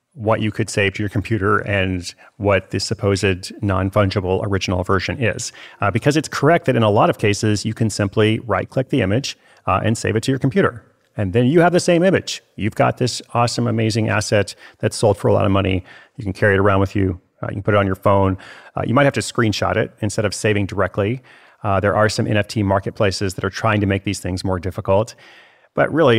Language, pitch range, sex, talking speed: English, 100-120 Hz, male, 230 wpm